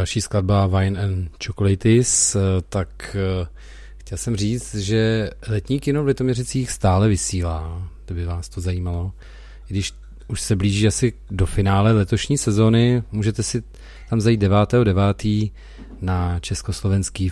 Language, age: Czech, 40-59